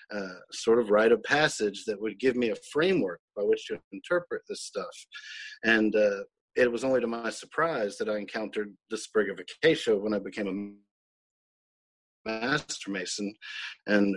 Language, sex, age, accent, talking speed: English, male, 40-59, American, 170 wpm